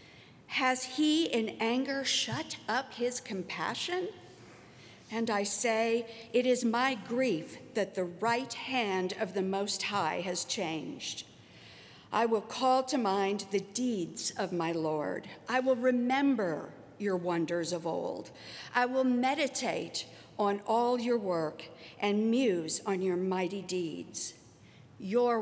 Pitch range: 190-255 Hz